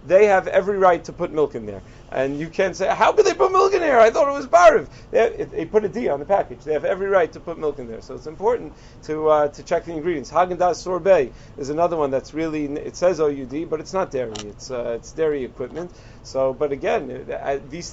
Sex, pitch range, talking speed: male, 135-175 Hz, 245 wpm